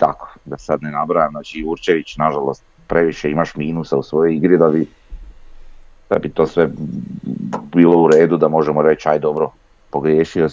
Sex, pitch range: male, 70-85 Hz